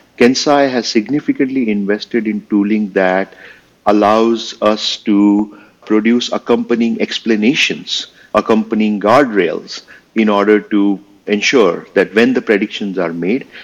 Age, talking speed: 50-69, 110 wpm